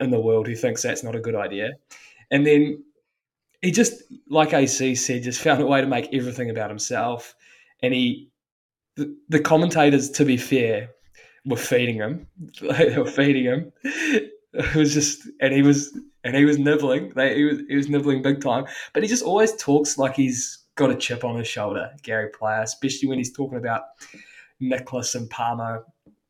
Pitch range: 120-145 Hz